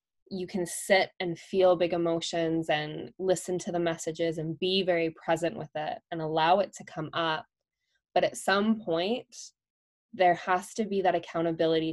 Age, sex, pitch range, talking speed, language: 10-29, female, 165-195 Hz, 170 wpm, English